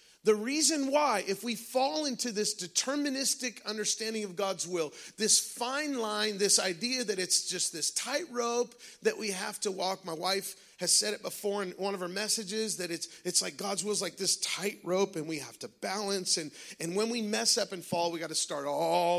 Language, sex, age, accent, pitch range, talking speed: English, male, 40-59, American, 180-250 Hz, 215 wpm